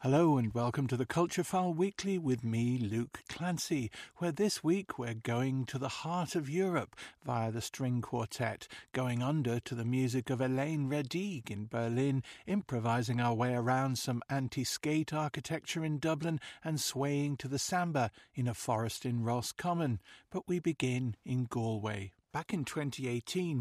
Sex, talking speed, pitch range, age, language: male, 160 wpm, 120-150 Hz, 50-69, English